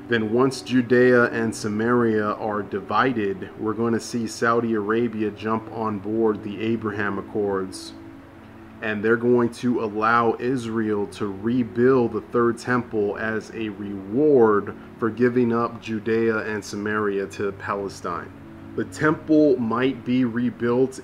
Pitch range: 105-120 Hz